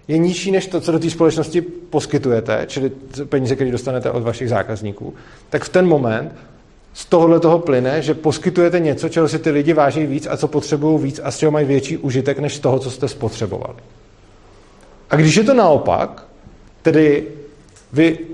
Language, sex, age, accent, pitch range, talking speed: Czech, male, 40-59, native, 125-160 Hz, 185 wpm